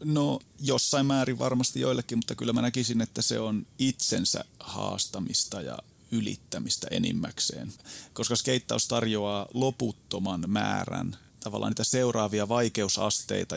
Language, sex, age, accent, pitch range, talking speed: Finnish, male, 30-49, native, 105-125 Hz, 115 wpm